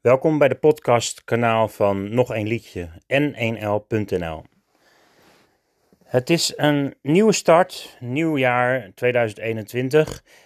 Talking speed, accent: 100 wpm, Dutch